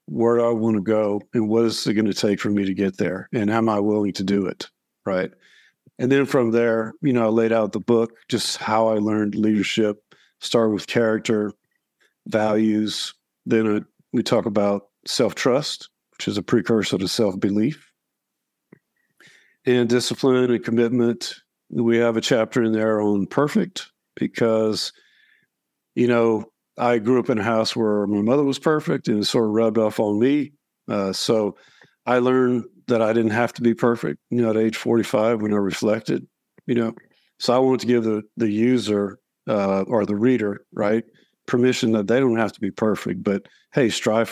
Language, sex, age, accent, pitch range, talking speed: English, male, 50-69, American, 105-120 Hz, 185 wpm